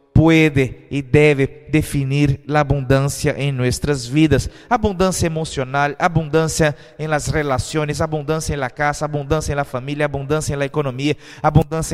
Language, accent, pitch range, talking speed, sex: Spanish, Brazilian, 145-195 Hz, 140 wpm, male